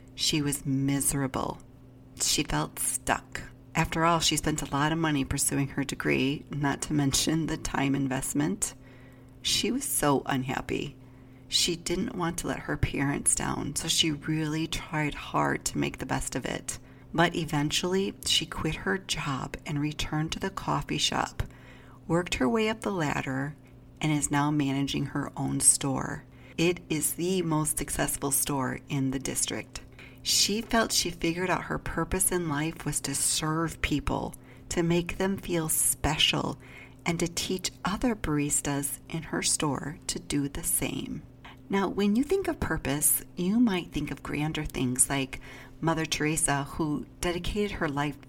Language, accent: English, American